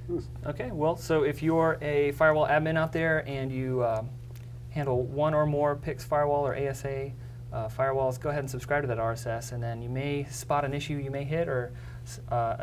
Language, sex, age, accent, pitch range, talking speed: English, male, 30-49, American, 120-140 Hz, 200 wpm